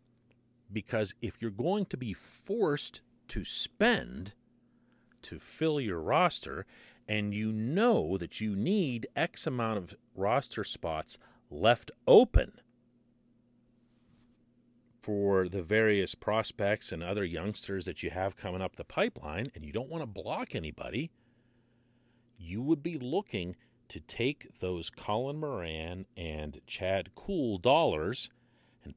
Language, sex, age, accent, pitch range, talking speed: English, male, 40-59, American, 95-120 Hz, 125 wpm